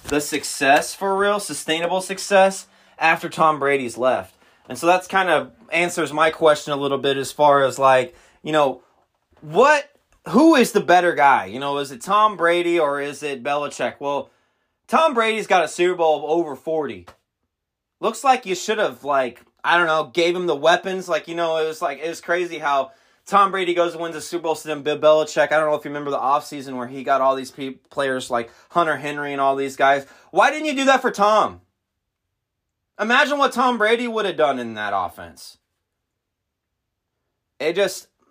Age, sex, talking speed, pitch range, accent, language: 20-39, male, 200 wpm, 140-185 Hz, American, English